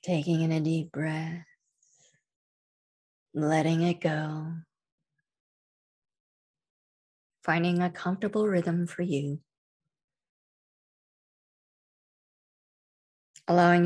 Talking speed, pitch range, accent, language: 65 wpm, 150-170 Hz, American, English